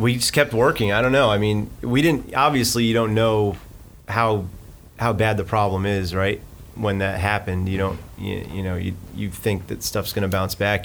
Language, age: English, 30-49